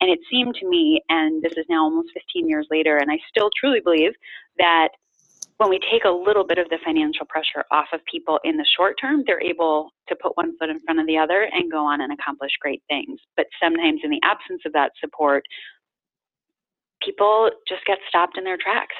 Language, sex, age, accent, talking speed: English, female, 30-49, American, 220 wpm